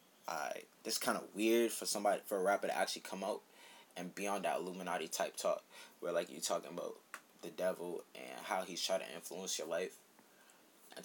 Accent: American